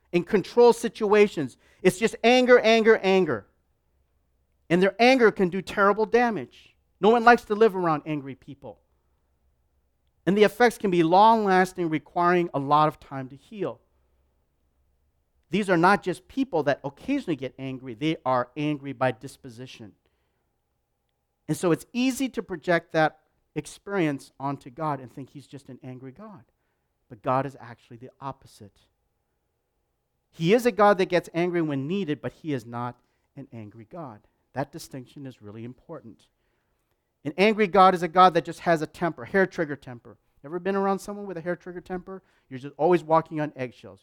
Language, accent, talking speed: English, American, 165 wpm